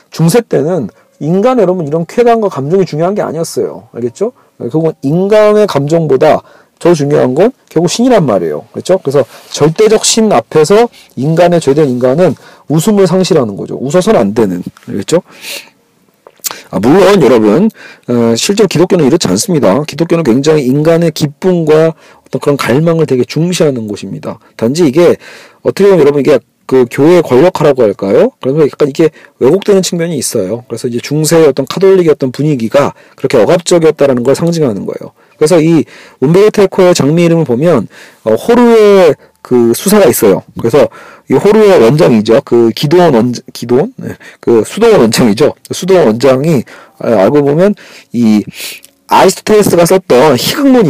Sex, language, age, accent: male, Korean, 40-59, native